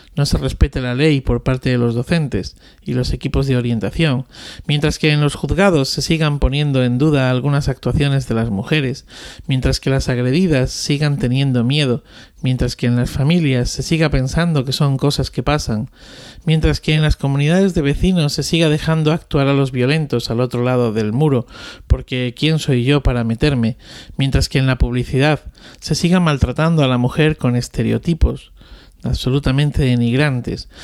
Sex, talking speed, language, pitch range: male, 175 wpm, Spanish, 125-155 Hz